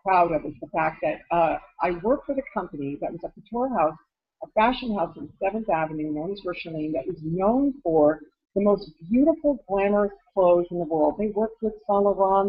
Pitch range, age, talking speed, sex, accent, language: 175-215 Hz, 50-69, 210 wpm, female, American, English